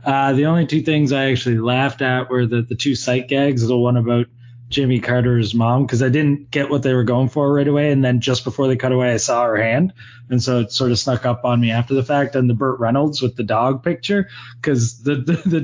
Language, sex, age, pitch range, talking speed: English, male, 20-39, 125-150 Hz, 255 wpm